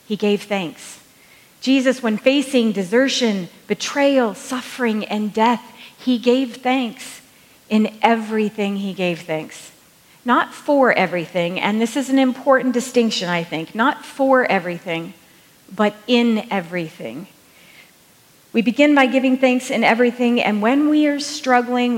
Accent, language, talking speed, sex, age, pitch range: American, English, 130 wpm, female, 40-59, 185-245 Hz